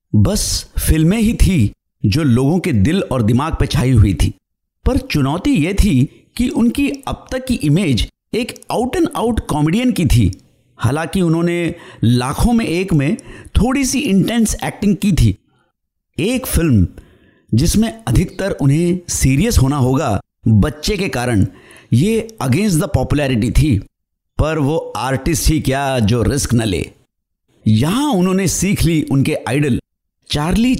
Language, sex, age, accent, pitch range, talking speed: Hindi, male, 60-79, native, 115-190 Hz, 145 wpm